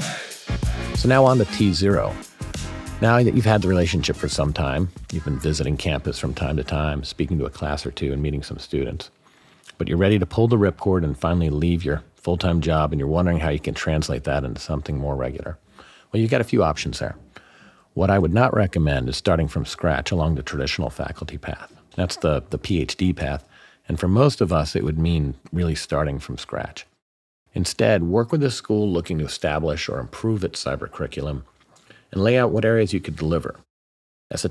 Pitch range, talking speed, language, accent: 70-95 Hz, 205 wpm, English, American